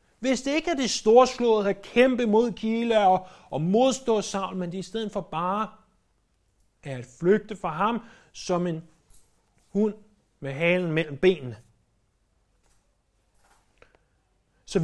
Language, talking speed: Danish, 135 wpm